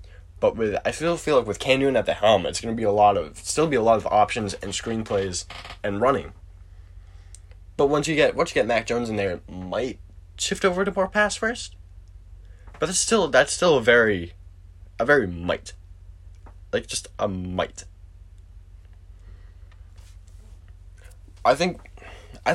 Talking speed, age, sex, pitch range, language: 170 wpm, 20-39, male, 85-110 Hz, English